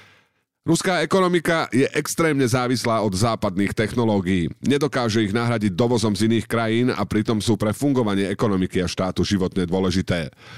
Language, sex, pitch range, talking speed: Slovak, male, 100-125 Hz, 140 wpm